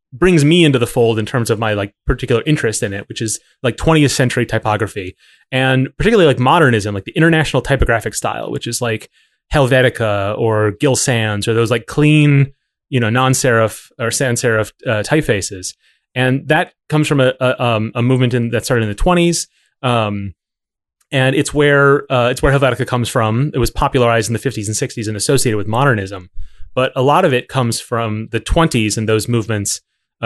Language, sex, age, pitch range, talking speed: English, male, 30-49, 110-135 Hz, 195 wpm